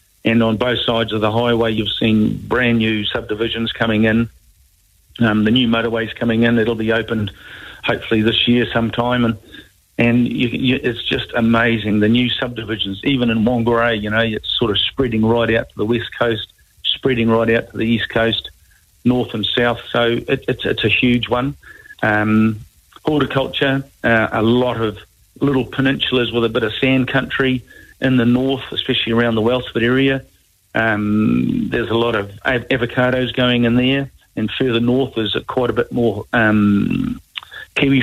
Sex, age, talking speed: male, 50-69, 175 wpm